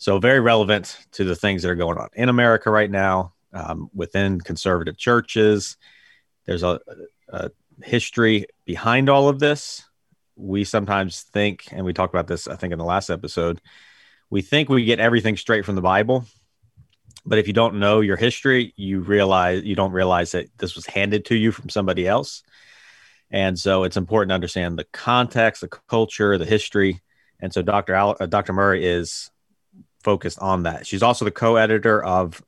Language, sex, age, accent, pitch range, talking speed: English, male, 30-49, American, 90-110 Hz, 180 wpm